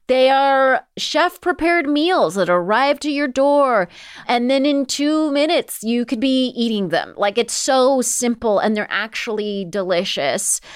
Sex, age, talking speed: female, 30-49, 155 wpm